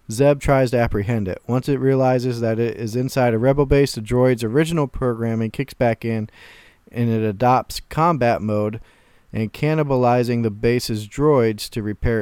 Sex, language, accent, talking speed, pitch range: male, English, American, 165 wpm, 115-135 Hz